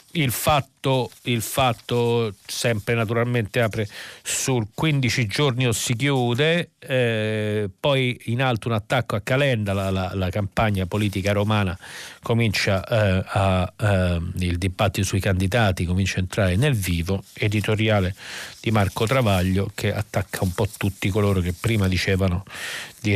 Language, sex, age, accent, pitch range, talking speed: Italian, male, 40-59, native, 100-130 Hz, 140 wpm